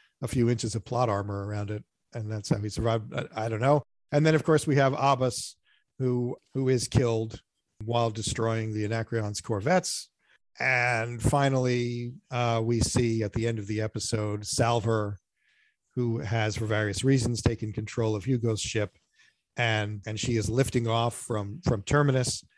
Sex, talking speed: male, 170 wpm